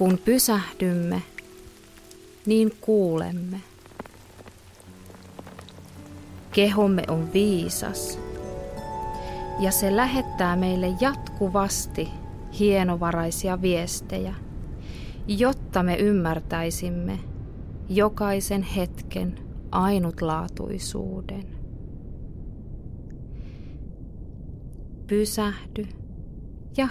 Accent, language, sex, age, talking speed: native, Finnish, female, 30-49, 50 wpm